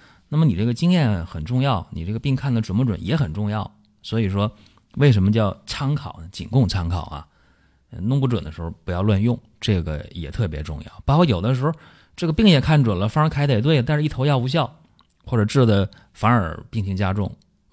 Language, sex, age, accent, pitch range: Chinese, male, 30-49, native, 85-120 Hz